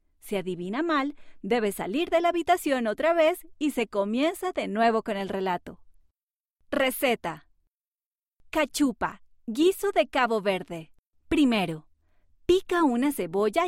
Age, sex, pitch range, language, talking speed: 30-49, female, 185-300 Hz, Spanish, 125 wpm